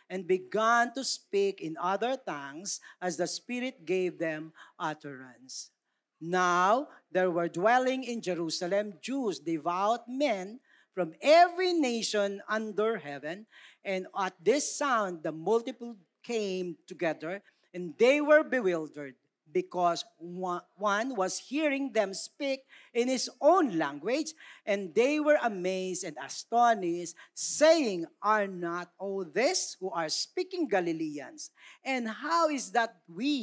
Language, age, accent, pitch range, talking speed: Filipino, 50-69, native, 175-260 Hz, 125 wpm